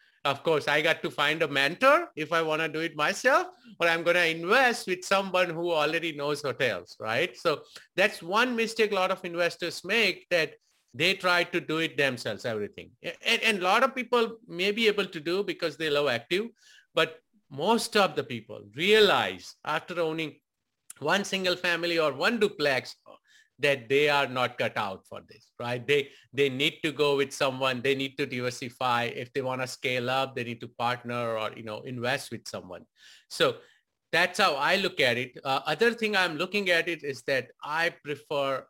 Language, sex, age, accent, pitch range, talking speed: English, male, 50-69, Indian, 130-190 Hz, 195 wpm